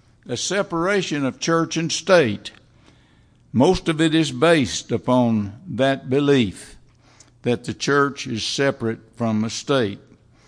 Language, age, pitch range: English, 60-79, 120-160 Hz